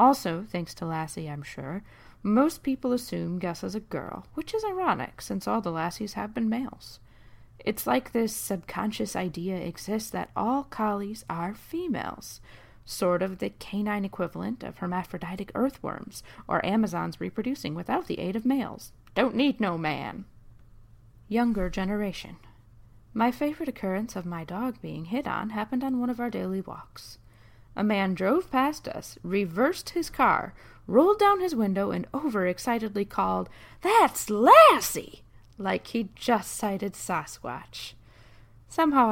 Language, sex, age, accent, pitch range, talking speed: English, female, 30-49, American, 155-235 Hz, 145 wpm